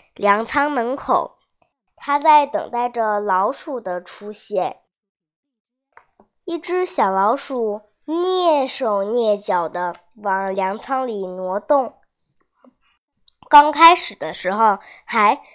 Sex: male